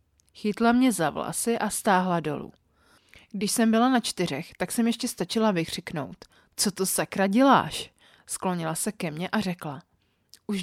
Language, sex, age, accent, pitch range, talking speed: Czech, female, 30-49, native, 175-225 Hz, 150 wpm